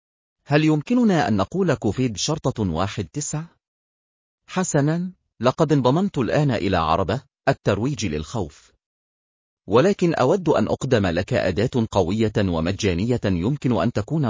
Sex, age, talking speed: male, 40-59, 115 wpm